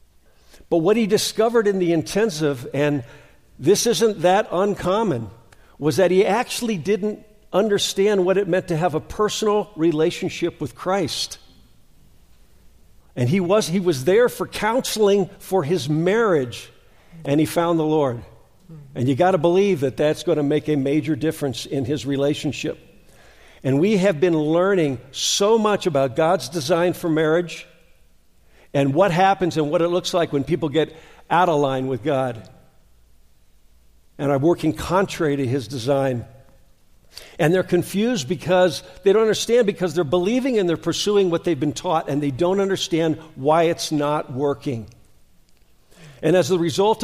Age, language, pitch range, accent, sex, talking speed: 50-69, English, 140-190 Hz, American, male, 160 wpm